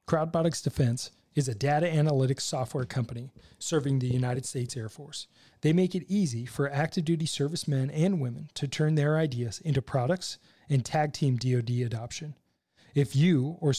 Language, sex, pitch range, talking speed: English, male, 125-160 Hz, 165 wpm